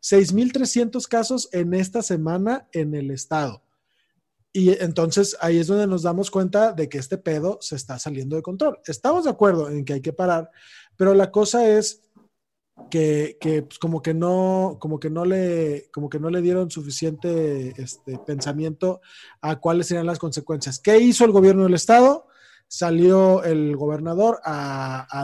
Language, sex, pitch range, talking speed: Spanish, male, 150-195 Hz, 170 wpm